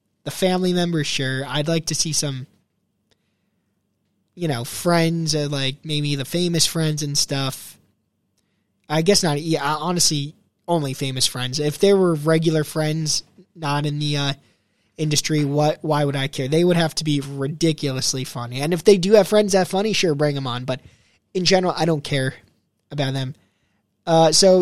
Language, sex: English, male